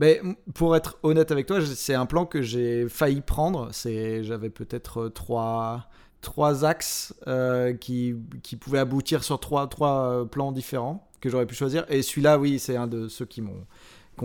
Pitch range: 120-150 Hz